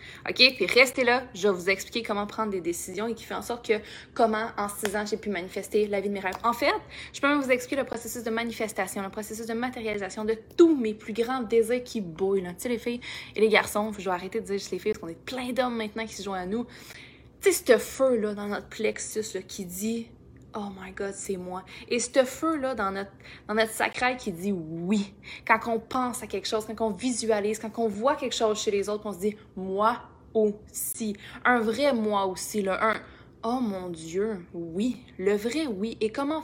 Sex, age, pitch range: female, 20-39, 200-240 Hz